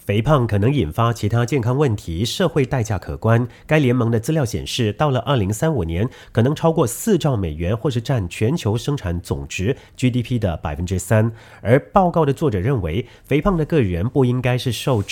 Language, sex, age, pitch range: English, male, 40-59, 100-140 Hz